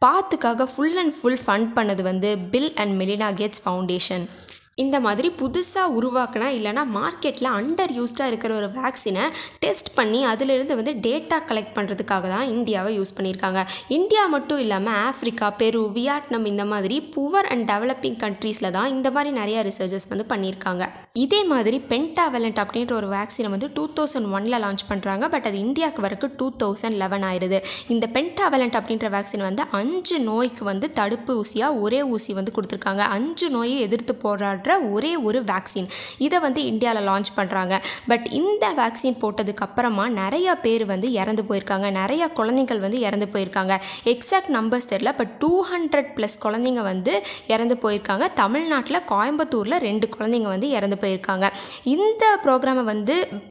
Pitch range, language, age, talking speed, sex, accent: 200-265 Hz, Tamil, 20-39, 100 wpm, female, native